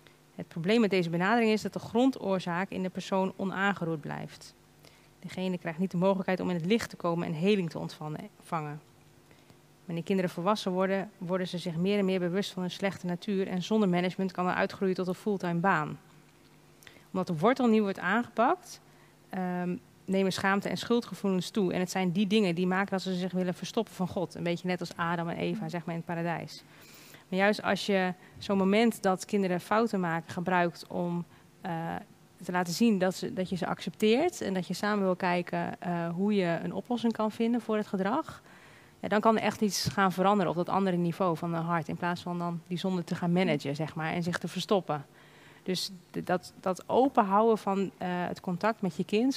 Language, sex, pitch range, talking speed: Dutch, female, 175-200 Hz, 205 wpm